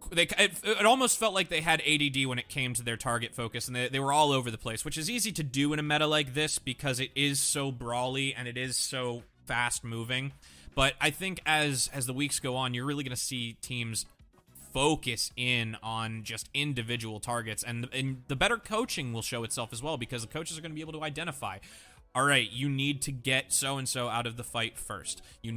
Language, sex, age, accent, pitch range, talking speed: English, male, 20-39, American, 115-140 Hz, 230 wpm